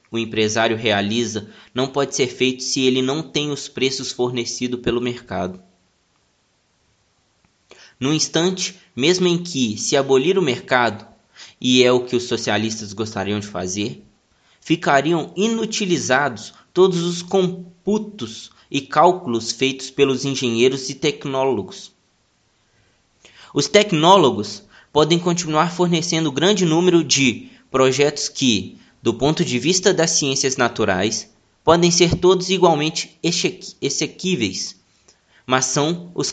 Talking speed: 115 wpm